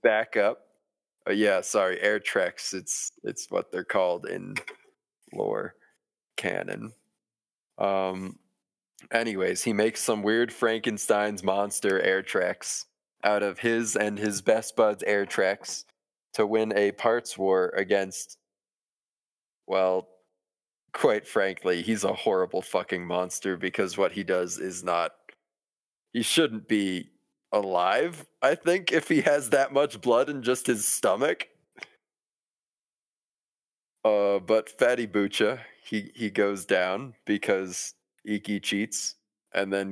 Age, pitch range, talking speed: 20-39, 95-115 Hz, 125 wpm